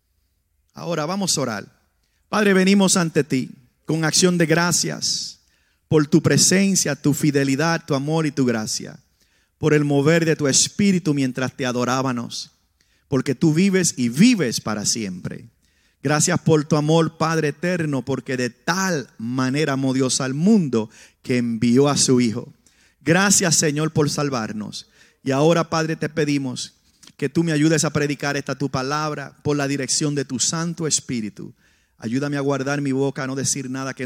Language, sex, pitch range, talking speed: English, male, 130-165 Hz, 160 wpm